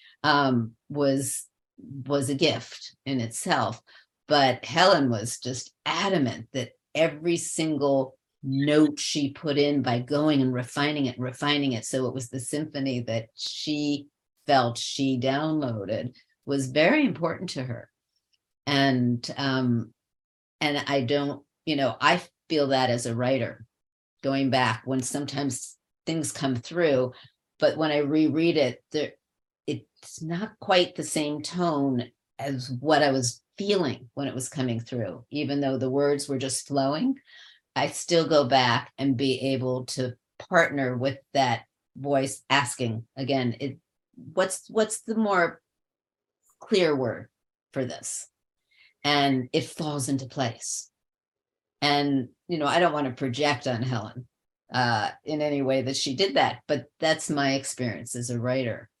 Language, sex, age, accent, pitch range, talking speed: English, female, 50-69, American, 125-150 Hz, 145 wpm